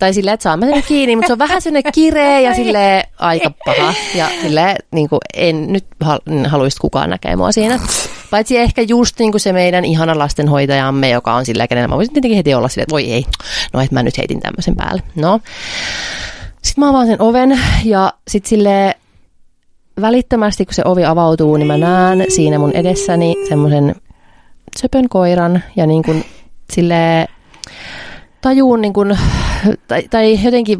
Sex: female